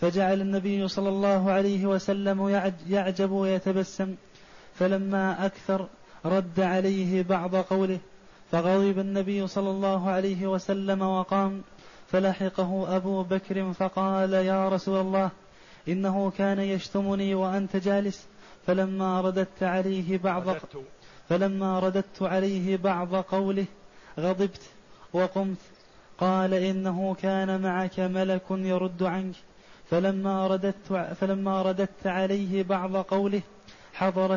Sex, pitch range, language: male, 185-195 Hz, Arabic